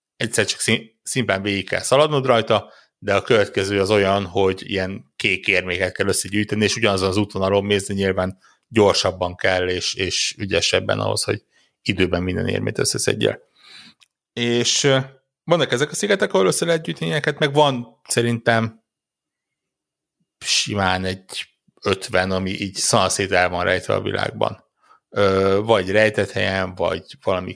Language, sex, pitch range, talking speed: Hungarian, male, 95-120 Hz, 140 wpm